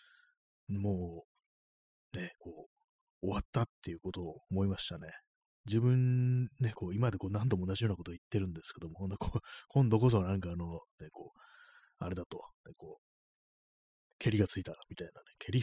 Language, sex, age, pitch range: Japanese, male, 30-49, 90-135 Hz